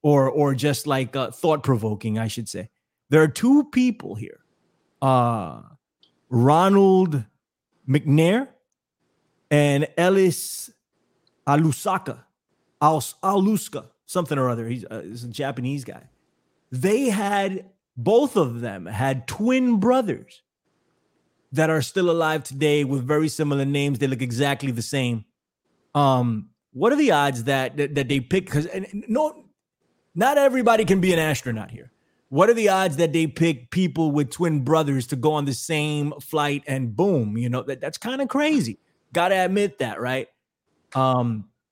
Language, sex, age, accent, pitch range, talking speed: English, male, 30-49, American, 125-165 Hz, 150 wpm